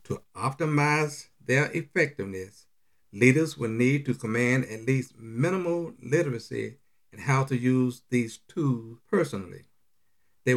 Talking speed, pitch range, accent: 120 wpm, 115-150 Hz, American